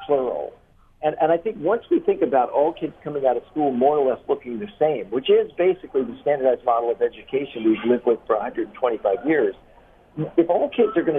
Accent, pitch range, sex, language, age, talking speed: American, 125-185 Hz, male, English, 50-69, 215 wpm